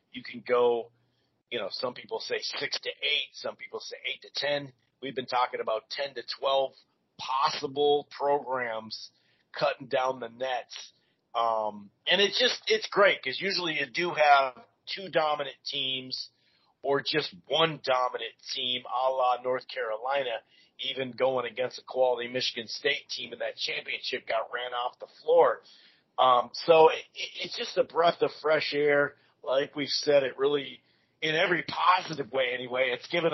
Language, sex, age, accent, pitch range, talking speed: English, male, 40-59, American, 125-165 Hz, 165 wpm